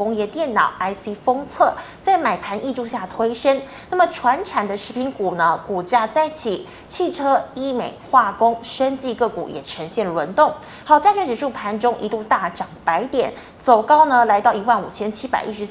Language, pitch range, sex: Chinese, 205-275 Hz, female